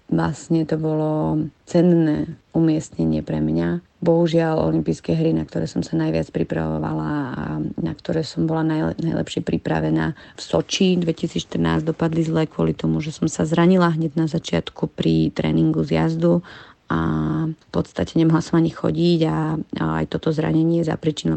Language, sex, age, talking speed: Slovak, female, 30-49, 155 wpm